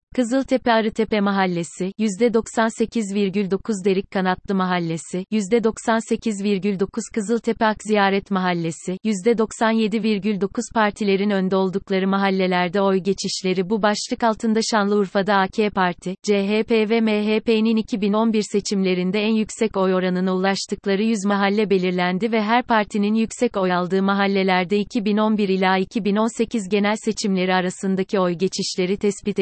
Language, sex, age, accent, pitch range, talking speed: Turkish, female, 30-49, native, 195-225 Hz, 110 wpm